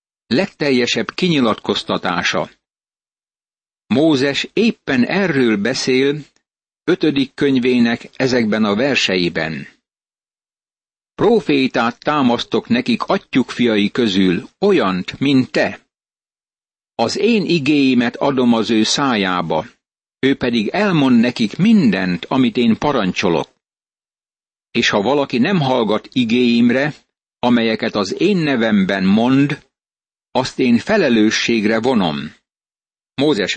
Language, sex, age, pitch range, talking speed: Hungarian, male, 60-79, 115-140 Hz, 90 wpm